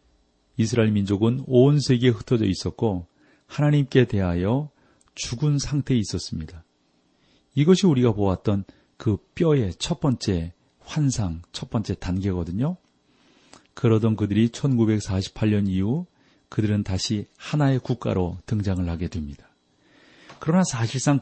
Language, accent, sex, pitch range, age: Korean, native, male, 95-130 Hz, 40-59